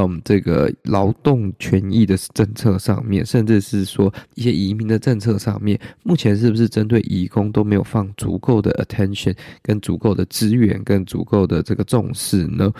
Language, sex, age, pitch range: Chinese, male, 20-39, 100-125 Hz